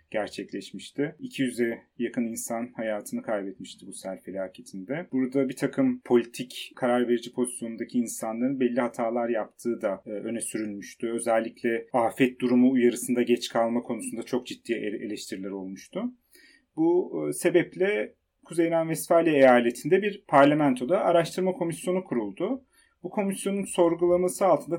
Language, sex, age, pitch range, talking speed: Turkish, male, 30-49, 120-155 Hz, 115 wpm